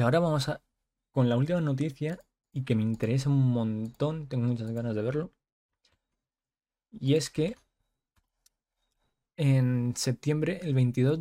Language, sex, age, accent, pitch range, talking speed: Spanish, male, 20-39, Spanish, 125-155 Hz, 135 wpm